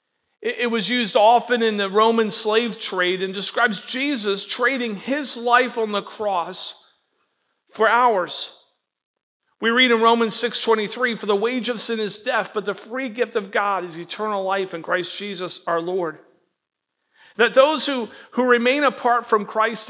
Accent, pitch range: American, 200-240 Hz